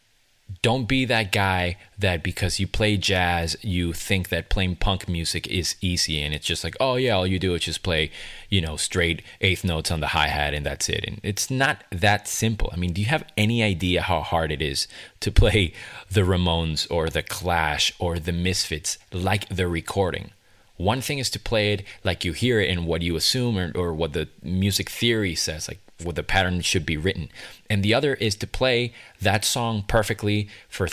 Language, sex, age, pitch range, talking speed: English, male, 30-49, 85-105 Hz, 210 wpm